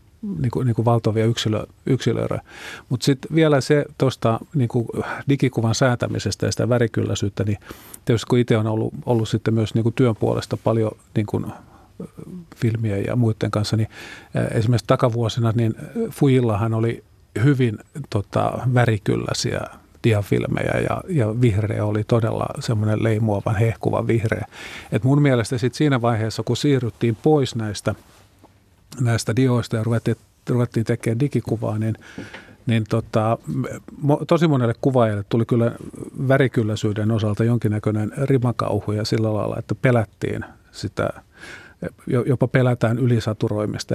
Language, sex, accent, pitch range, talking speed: Finnish, male, native, 110-130 Hz, 125 wpm